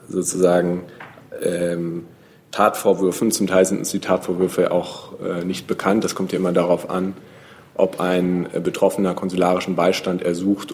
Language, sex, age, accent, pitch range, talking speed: German, male, 40-59, German, 90-100 Hz, 145 wpm